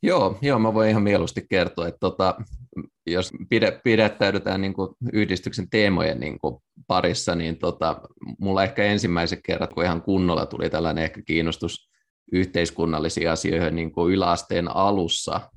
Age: 20-39